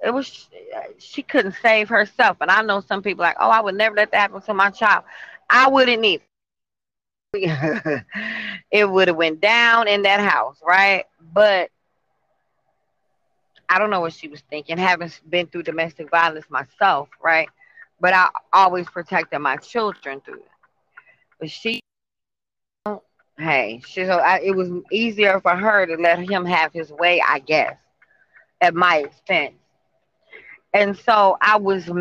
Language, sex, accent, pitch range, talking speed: English, female, American, 170-220 Hz, 155 wpm